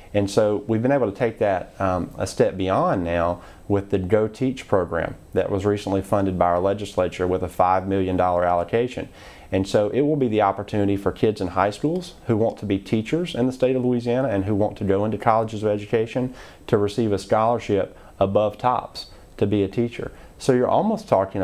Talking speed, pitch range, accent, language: 215 wpm, 95-110 Hz, American, English